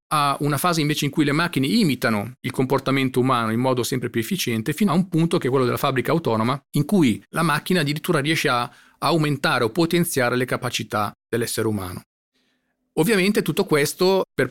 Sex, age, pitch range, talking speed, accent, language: male, 40-59, 120-150 Hz, 185 wpm, native, Italian